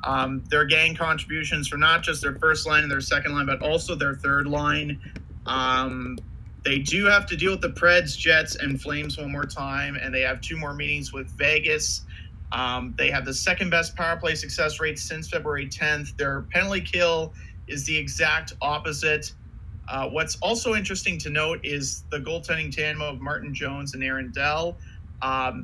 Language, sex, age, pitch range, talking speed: English, male, 30-49, 130-175 Hz, 185 wpm